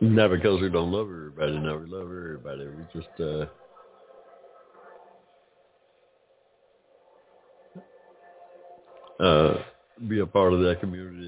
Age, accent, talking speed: 60-79, American, 105 wpm